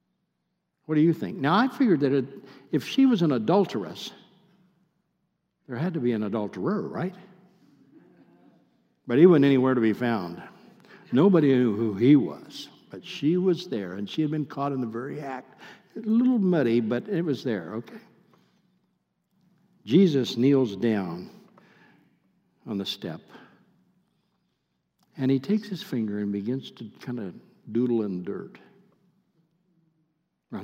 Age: 60-79